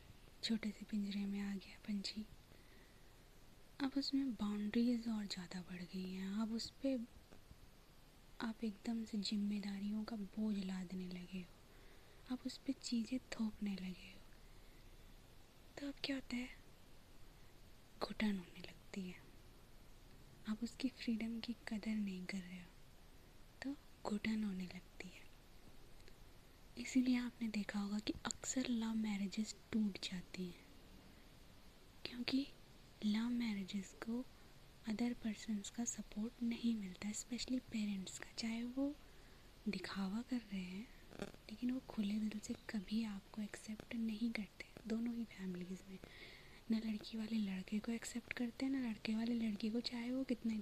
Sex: female